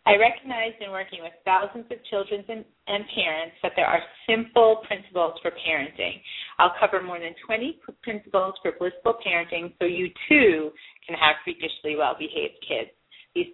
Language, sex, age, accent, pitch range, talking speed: English, female, 30-49, American, 170-230 Hz, 155 wpm